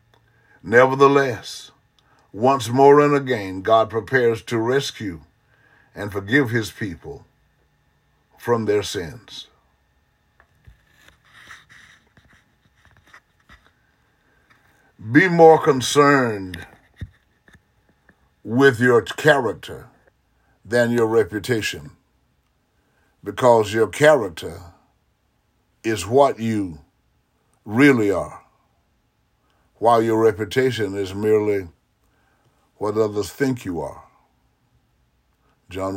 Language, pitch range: English, 105-125 Hz